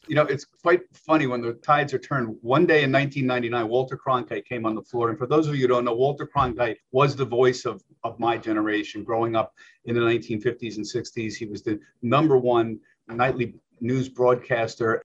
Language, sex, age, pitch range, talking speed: English, male, 50-69, 120-180 Hz, 205 wpm